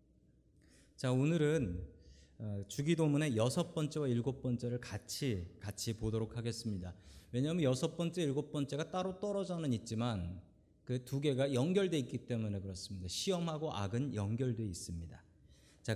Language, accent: Korean, native